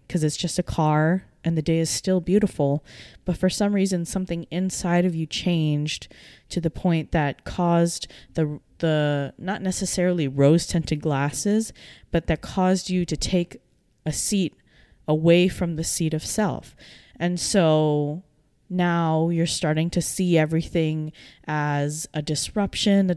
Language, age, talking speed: English, 20-39, 150 wpm